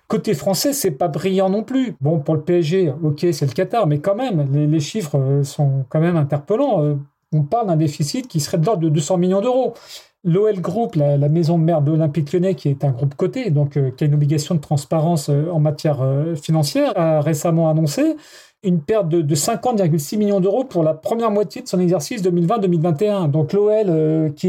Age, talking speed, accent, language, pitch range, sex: 30-49, 200 wpm, French, French, 155-195 Hz, male